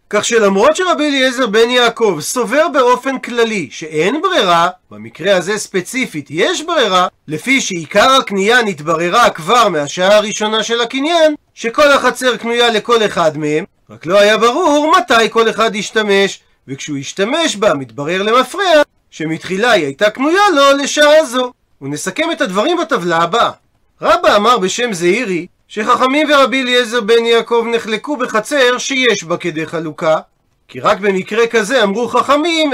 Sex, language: male, Hebrew